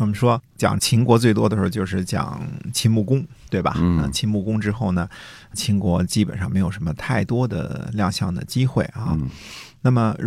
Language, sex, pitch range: Chinese, male, 95-115 Hz